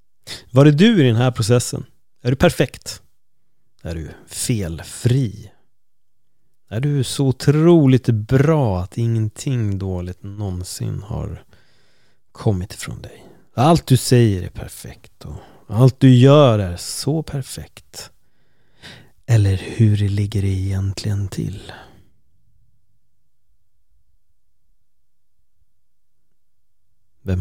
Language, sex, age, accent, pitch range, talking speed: Swedish, male, 30-49, native, 95-125 Hz, 100 wpm